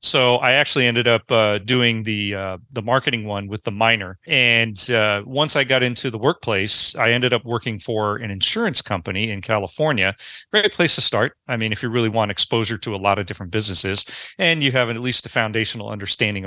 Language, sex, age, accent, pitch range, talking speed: English, male, 40-59, American, 110-140 Hz, 210 wpm